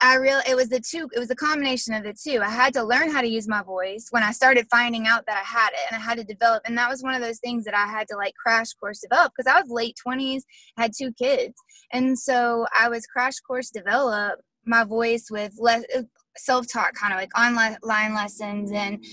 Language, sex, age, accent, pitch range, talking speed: English, female, 20-39, American, 215-255 Hz, 240 wpm